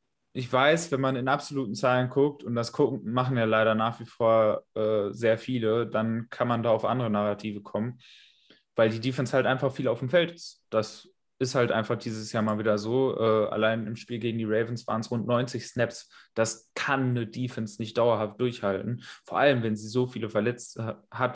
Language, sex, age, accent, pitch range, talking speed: German, male, 20-39, German, 110-135 Hz, 210 wpm